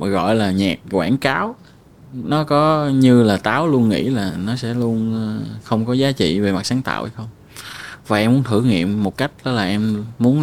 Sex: male